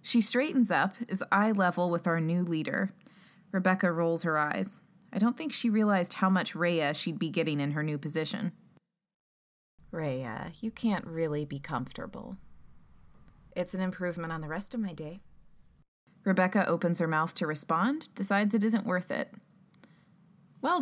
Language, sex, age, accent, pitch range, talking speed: English, female, 20-39, American, 155-190 Hz, 160 wpm